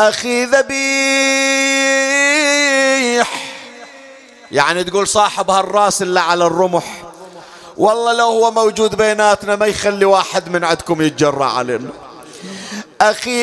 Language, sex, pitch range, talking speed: Arabic, male, 215-275 Hz, 100 wpm